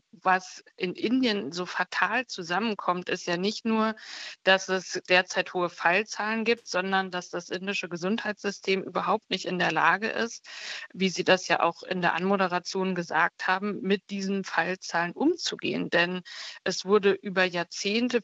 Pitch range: 180-210 Hz